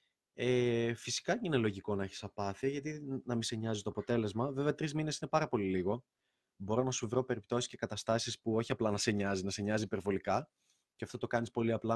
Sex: male